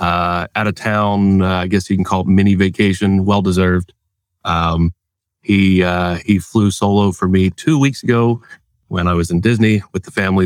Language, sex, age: English, male, 30-49